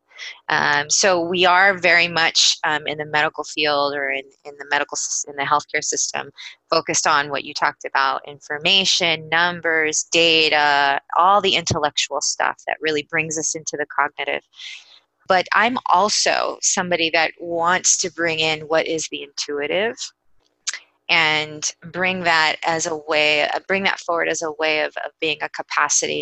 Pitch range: 150-170 Hz